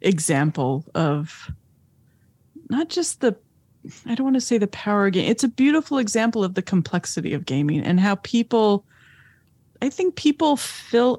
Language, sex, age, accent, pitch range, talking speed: English, female, 30-49, American, 175-220 Hz, 155 wpm